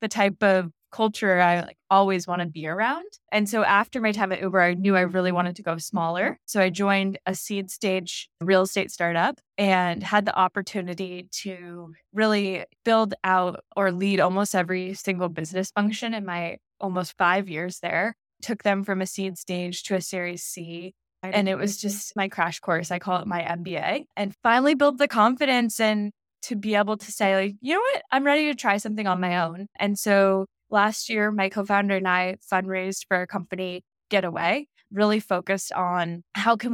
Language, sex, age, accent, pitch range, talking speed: English, female, 10-29, American, 180-205 Hz, 195 wpm